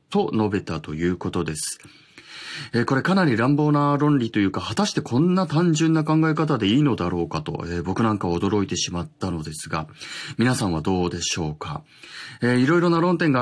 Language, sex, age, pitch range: Japanese, male, 30-49, 100-145 Hz